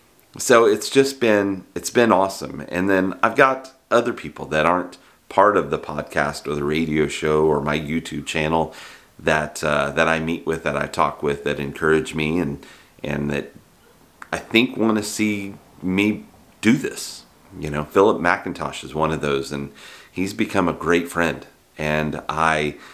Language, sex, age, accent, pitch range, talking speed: English, male, 30-49, American, 75-90 Hz, 175 wpm